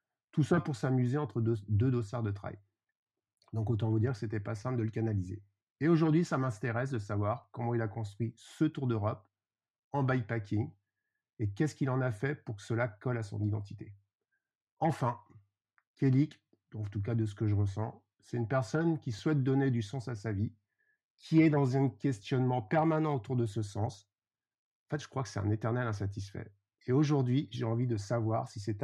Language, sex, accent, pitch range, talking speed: French, male, French, 105-135 Hz, 205 wpm